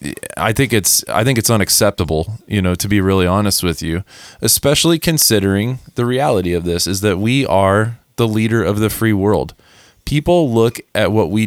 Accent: American